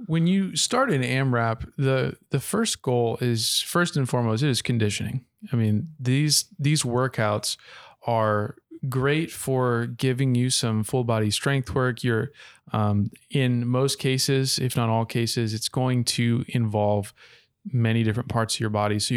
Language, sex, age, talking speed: English, male, 20-39, 160 wpm